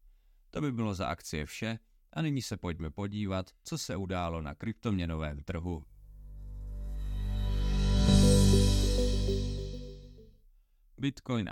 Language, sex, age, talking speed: Czech, male, 40-59, 95 wpm